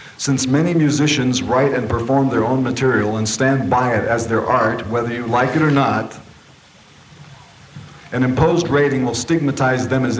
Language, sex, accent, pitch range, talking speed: Dutch, male, American, 100-130 Hz, 170 wpm